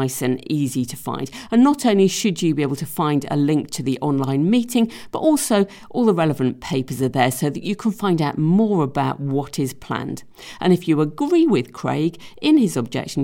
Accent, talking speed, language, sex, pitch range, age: British, 215 wpm, English, female, 135-200 Hz, 50-69